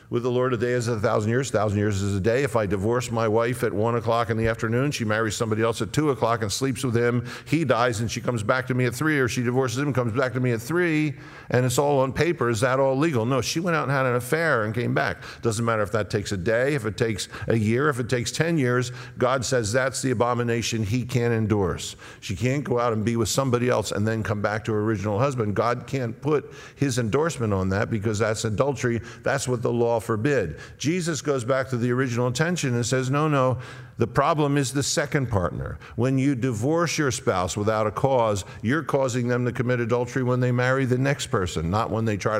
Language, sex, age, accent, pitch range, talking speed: English, male, 50-69, American, 110-130 Hz, 250 wpm